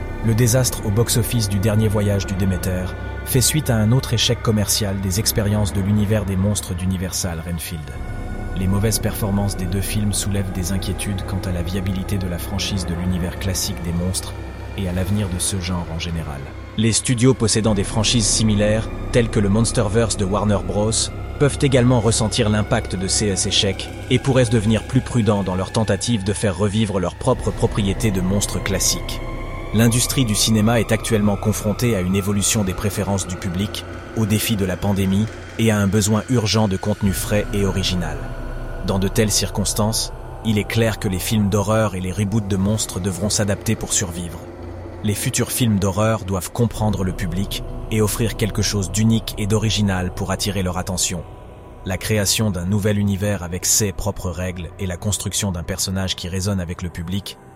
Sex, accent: male, French